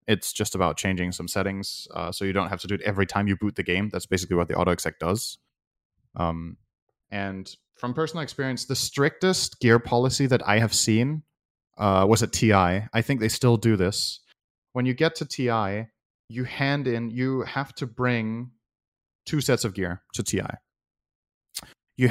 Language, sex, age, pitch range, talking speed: English, male, 30-49, 100-125 Hz, 185 wpm